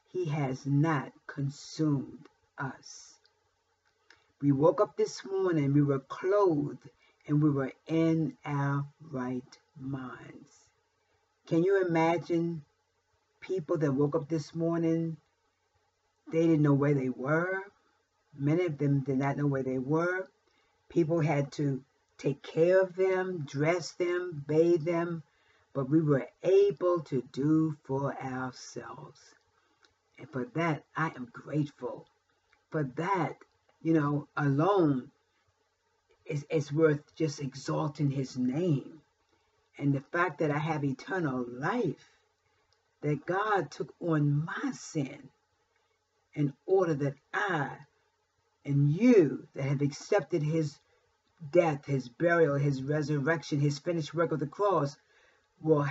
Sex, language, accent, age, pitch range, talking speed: female, English, American, 50-69, 140-170 Hz, 125 wpm